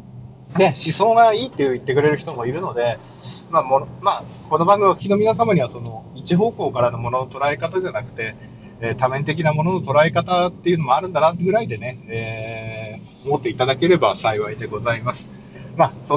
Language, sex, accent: Japanese, male, native